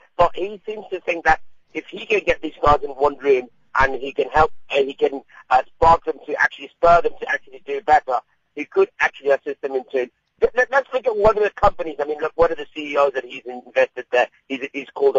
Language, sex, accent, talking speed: English, male, British, 250 wpm